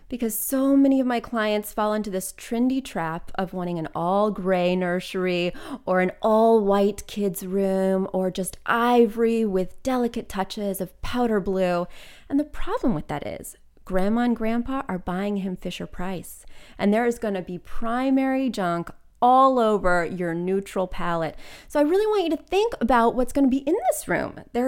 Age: 30-49